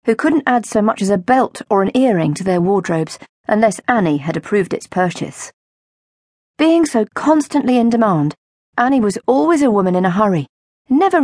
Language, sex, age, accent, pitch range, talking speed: English, female, 40-59, British, 185-255 Hz, 180 wpm